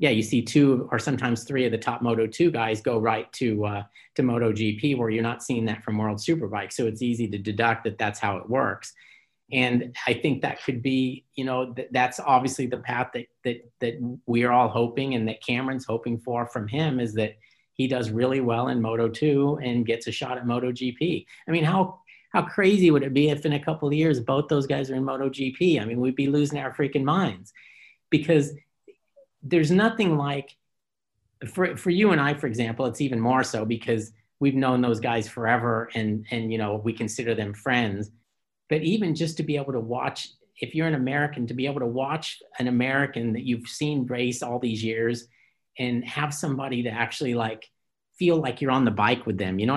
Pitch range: 115-140 Hz